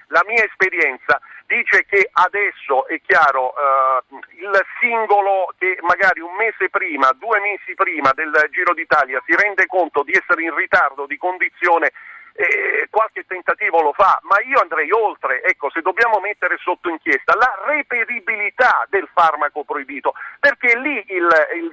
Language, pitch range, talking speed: Italian, 155-210 Hz, 150 wpm